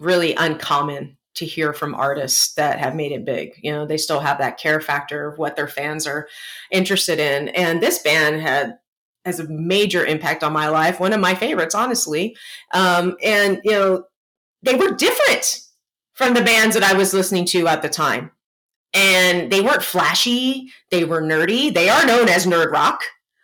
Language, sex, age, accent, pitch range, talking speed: English, female, 30-49, American, 180-260 Hz, 185 wpm